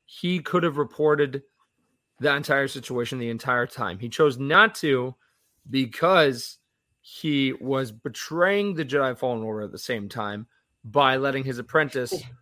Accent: American